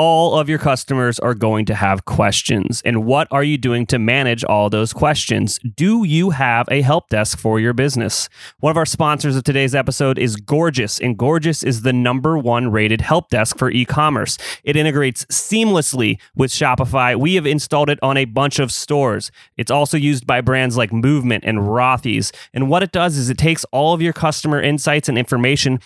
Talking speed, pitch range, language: 195 wpm, 120-150 Hz, English